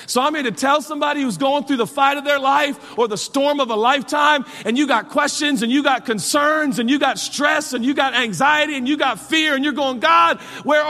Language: English